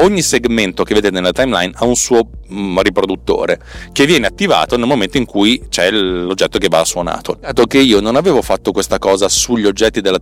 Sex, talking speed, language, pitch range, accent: male, 200 wpm, Italian, 90-125 Hz, native